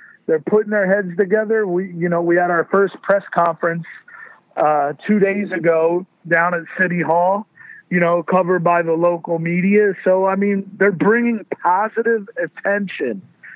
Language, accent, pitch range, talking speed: English, American, 165-205 Hz, 160 wpm